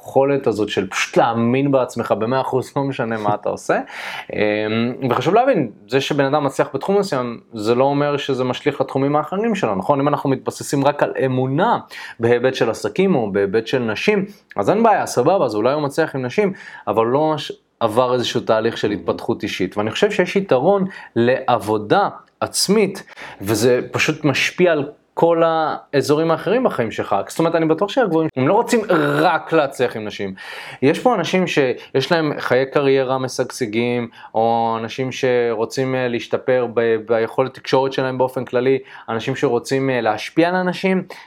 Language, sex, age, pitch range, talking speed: Hebrew, male, 20-39, 120-160 Hz, 160 wpm